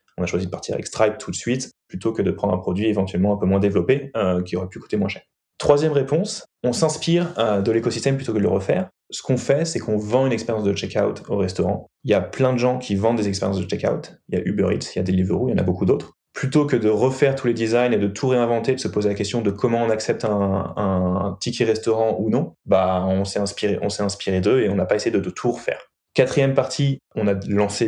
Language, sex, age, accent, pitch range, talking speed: French, male, 20-39, French, 100-120 Hz, 275 wpm